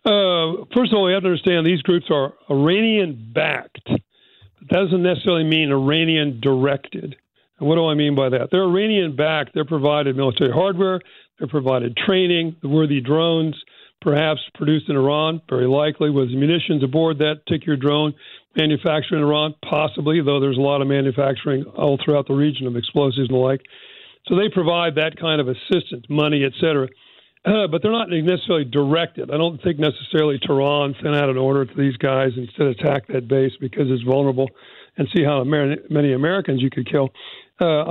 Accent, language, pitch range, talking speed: American, English, 140-165 Hz, 175 wpm